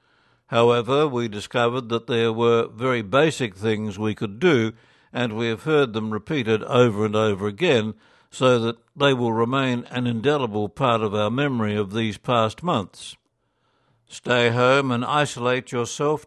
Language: English